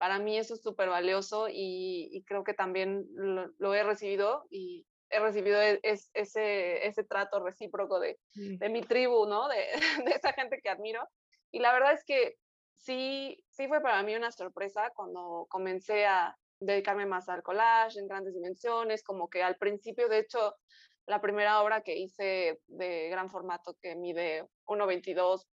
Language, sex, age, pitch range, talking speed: English, female, 20-39, 195-240 Hz, 175 wpm